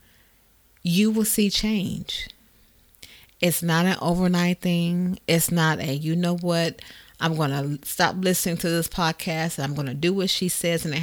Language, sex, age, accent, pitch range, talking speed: English, female, 40-59, American, 160-200 Hz, 180 wpm